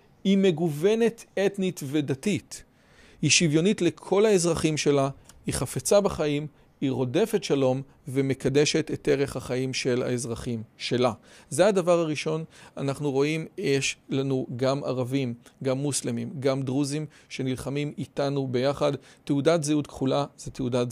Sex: male